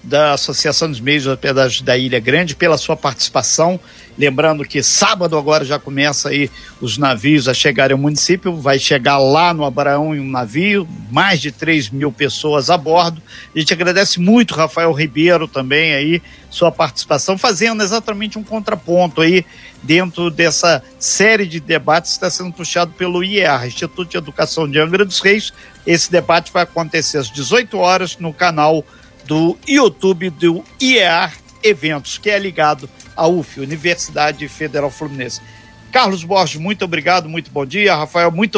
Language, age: Portuguese, 50-69